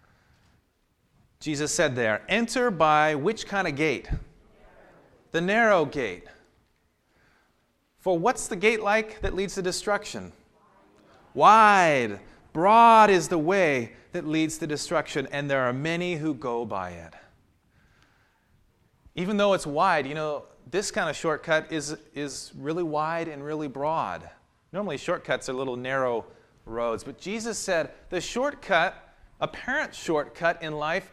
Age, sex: 30-49, male